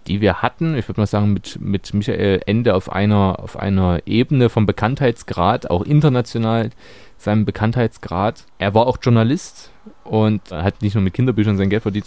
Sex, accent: male, German